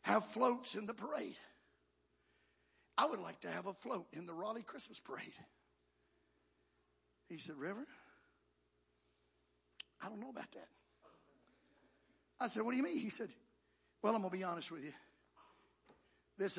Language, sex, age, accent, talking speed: English, male, 50-69, American, 150 wpm